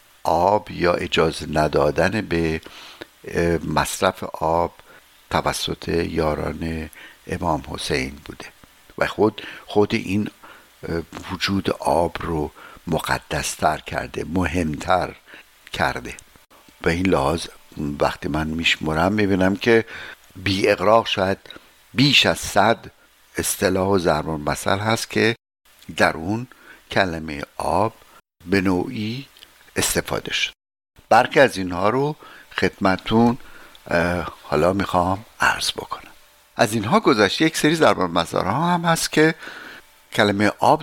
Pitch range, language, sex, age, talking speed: 85-110 Hz, Persian, male, 60-79, 105 wpm